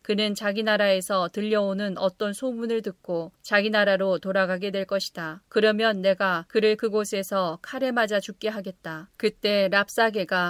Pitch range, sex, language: 190-220 Hz, female, Korean